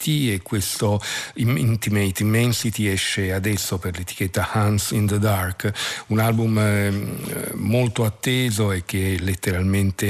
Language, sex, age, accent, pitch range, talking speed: Italian, male, 50-69, native, 95-110 Hz, 120 wpm